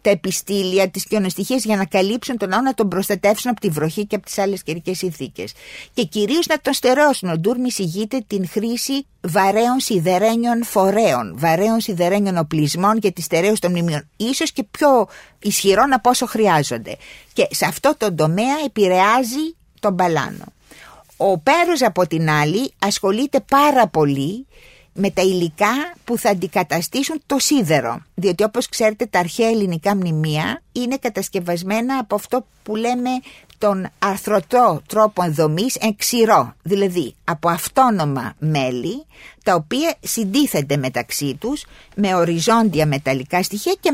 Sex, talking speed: female, 145 wpm